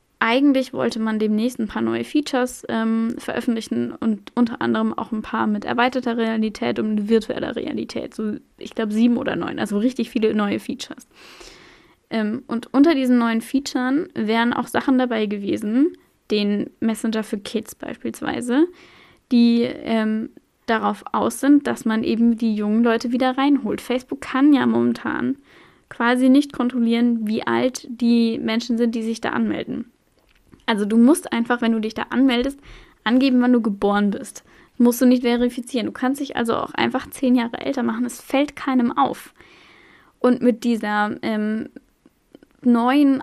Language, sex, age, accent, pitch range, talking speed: German, female, 10-29, German, 225-265 Hz, 160 wpm